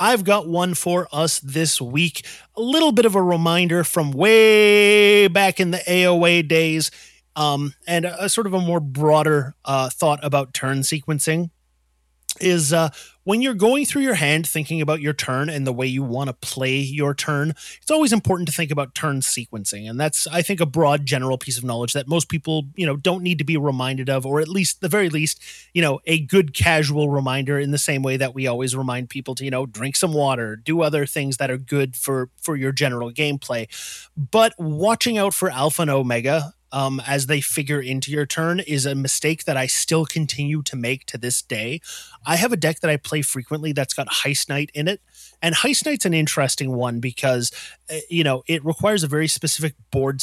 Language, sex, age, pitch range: English, male, 30-49, 135-170 Hz